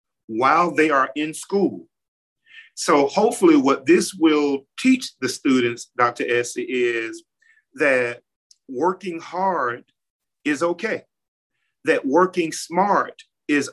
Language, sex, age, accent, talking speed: English, male, 40-59, American, 110 wpm